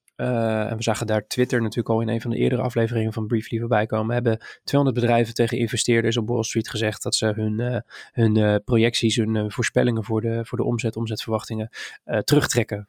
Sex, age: male, 20-39